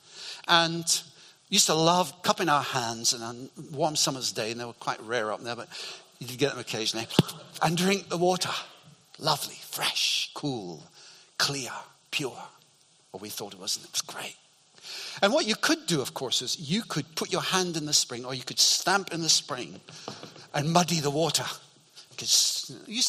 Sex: male